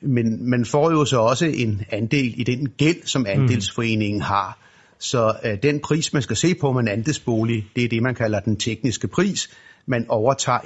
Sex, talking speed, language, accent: male, 185 wpm, Danish, native